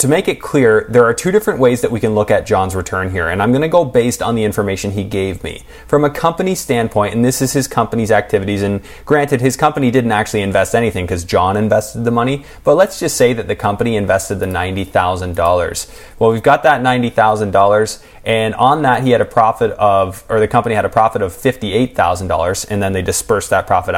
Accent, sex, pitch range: American, male, 100-130 Hz